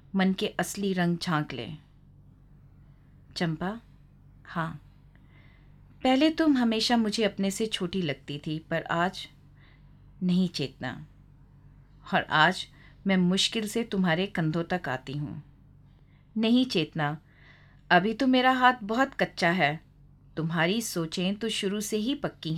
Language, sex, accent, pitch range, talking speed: Hindi, female, native, 145-215 Hz, 125 wpm